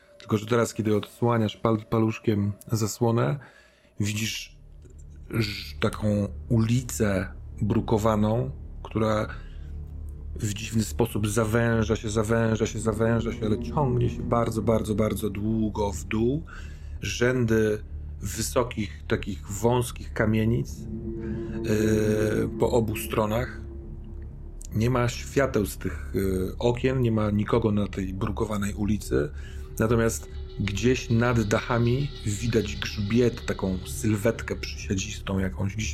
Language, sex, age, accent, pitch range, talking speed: Polish, male, 40-59, native, 95-115 Hz, 105 wpm